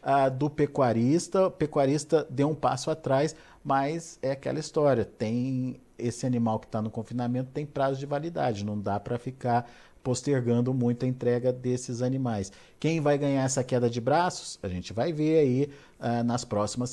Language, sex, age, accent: Portuguese, male, 50-69, Brazilian